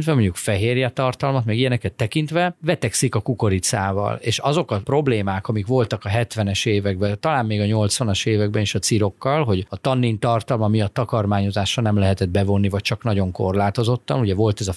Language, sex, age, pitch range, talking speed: Hungarian, male, 30-49, 100-130 Hz, 175 wpm